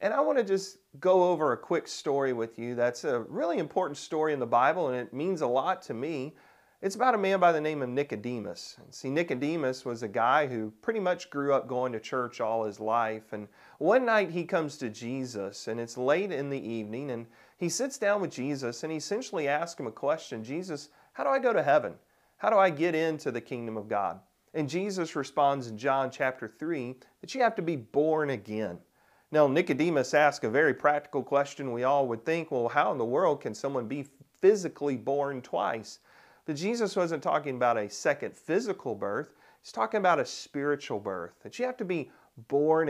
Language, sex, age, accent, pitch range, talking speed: English, male, 40-59, American, 120-170 Hz, 210 wpm